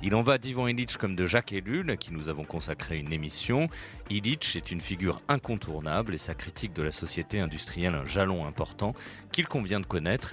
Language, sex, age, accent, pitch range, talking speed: French, male, 40-59, French, 80-115 Hz, 200 wpm